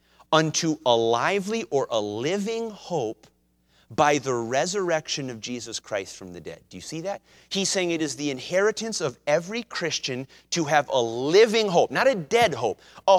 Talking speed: 180 wpm